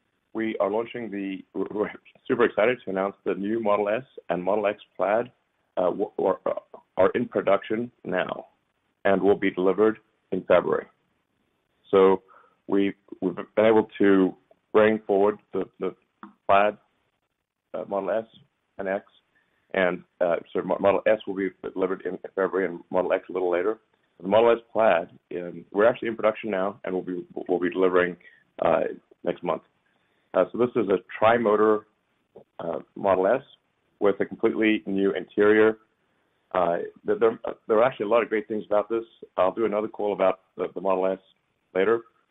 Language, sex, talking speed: English, male, 165 wpm